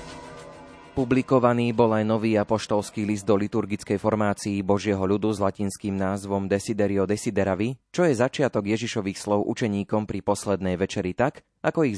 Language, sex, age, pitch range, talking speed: Slovak, male, 30-49, 95-120 Hz, 140 wpm